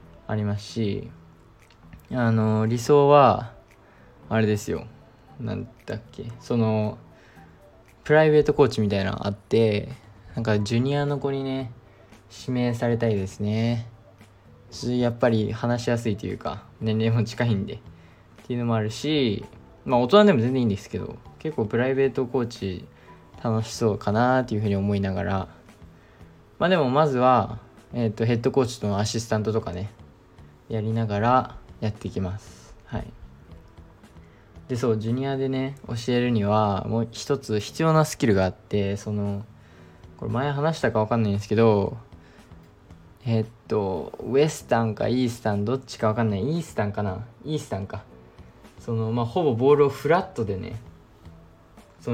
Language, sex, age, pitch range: Japanese, male, 20-39, 100-120 Hz